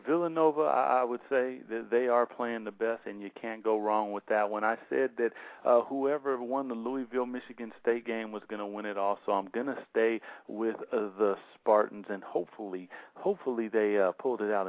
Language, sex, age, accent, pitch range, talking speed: English, male, 50-69, American, 105-140 Hz, 210 wpm